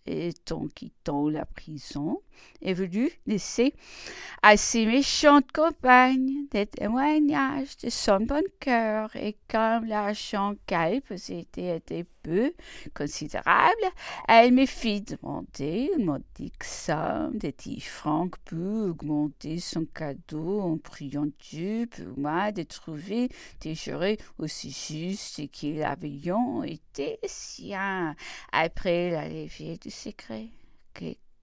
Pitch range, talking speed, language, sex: 150-230 Hz, 120 wpm, English, female